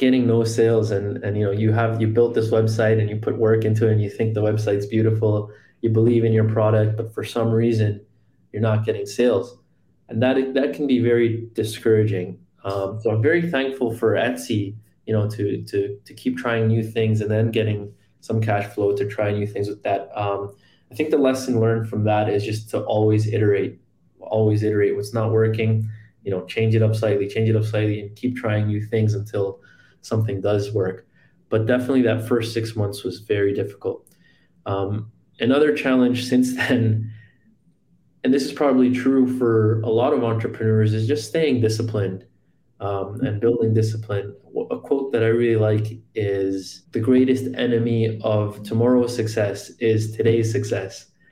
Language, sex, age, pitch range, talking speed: English, male, 20-39, 105-120 Hz, 185 wpm